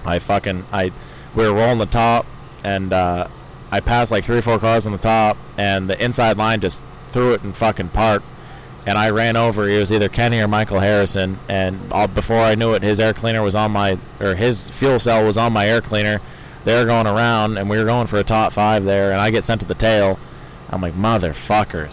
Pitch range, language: 100-115 Hz, English